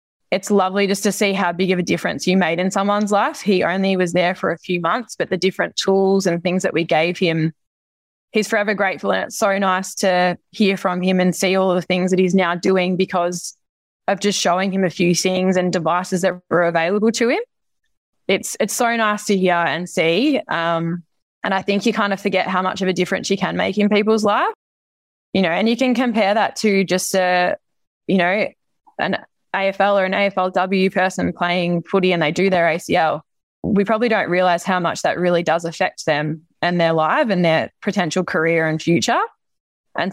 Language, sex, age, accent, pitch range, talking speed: English, female, 20-39, Australian, 170-200 Hz, 210 wpm